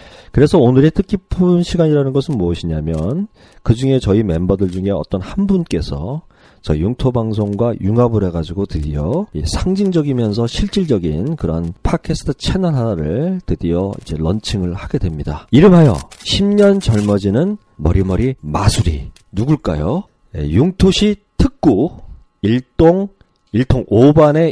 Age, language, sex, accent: 40-59, Korean, male, native